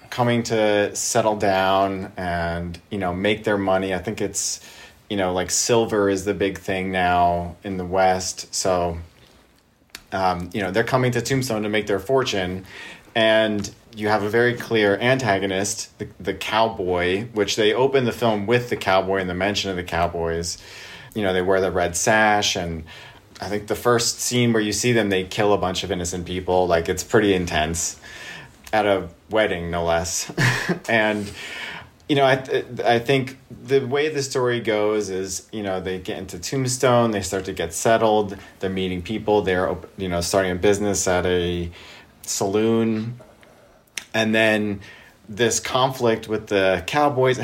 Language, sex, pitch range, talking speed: English, male, 95-115 Hz, 175 wpm